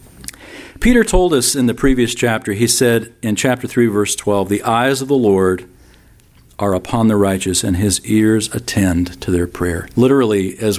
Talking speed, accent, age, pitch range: 180 wpm, American, 50-69, 100-120 Hz